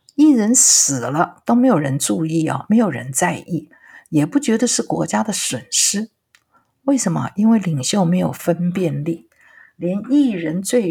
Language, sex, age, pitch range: Chinese, female, 50-69, 160-245 Hz